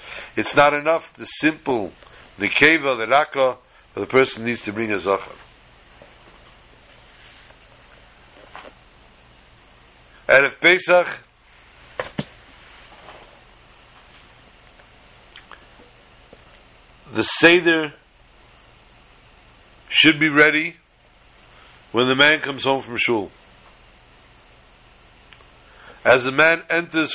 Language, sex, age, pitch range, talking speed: English, male, 60-79, 100-155 Hz, 75 wpm